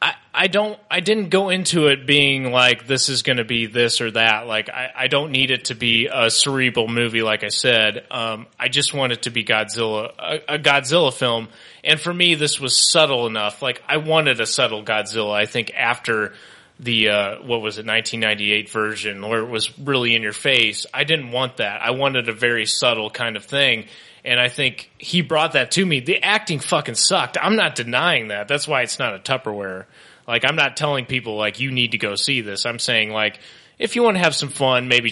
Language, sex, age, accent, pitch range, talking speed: English, male, 20-39, American, 110-145 Hz, 225 wpm